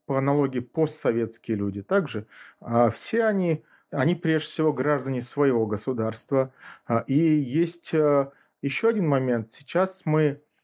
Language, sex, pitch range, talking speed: Russian, male, 120-150 Hz, 115 wpm